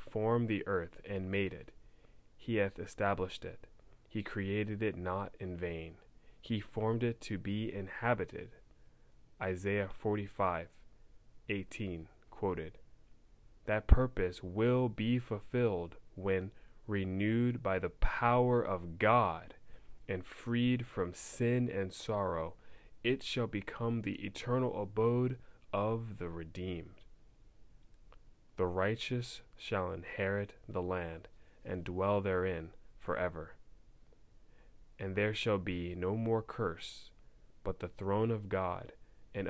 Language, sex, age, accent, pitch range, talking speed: English, male, 20-39, American, 90-110 Hz, 115 wpm